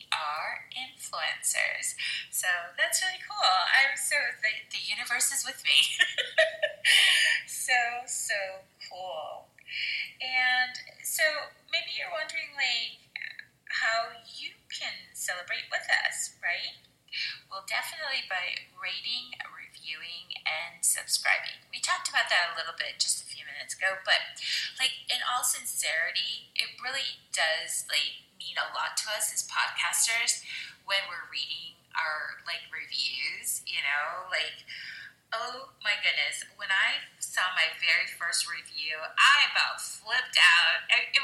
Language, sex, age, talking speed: English, female, 20-39, 130 wpm